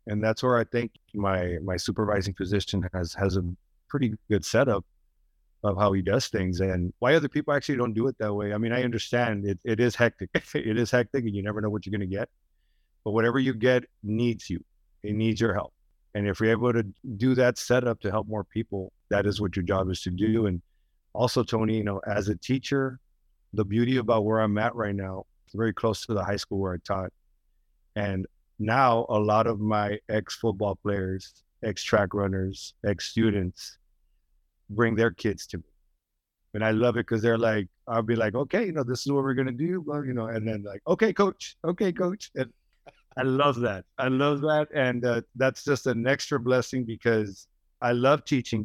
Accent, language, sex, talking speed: American, English, male, 210 wpm